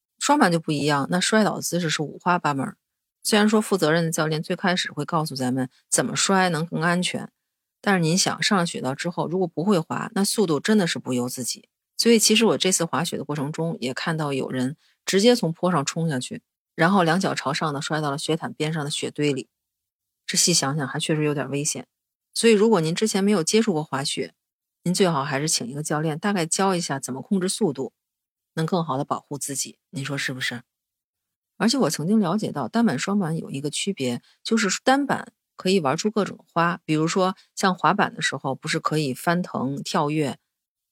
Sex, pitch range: female, 145-205 Hz